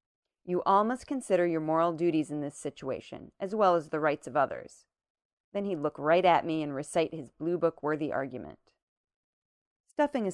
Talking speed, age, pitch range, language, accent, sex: 175 wpm, 40-59, 150-190 Hz, English, American, female